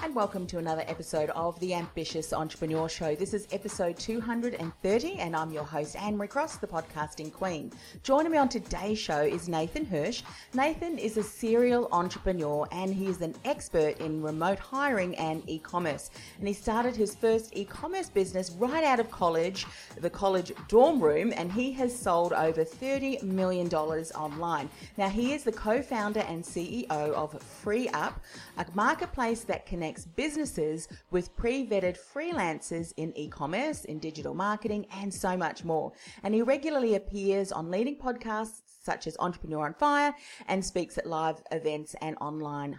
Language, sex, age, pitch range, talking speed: English, female, 30-49, 160-225 Hz, 160 wpm